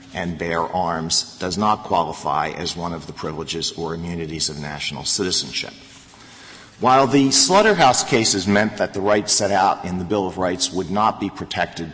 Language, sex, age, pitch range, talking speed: English, male, 50-69, 90-110 Hz, 175 wpm